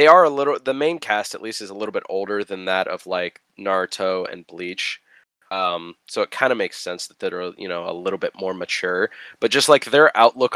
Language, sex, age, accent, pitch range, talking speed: English, male, 20-39, American, 105-150 Hz, 240 wpm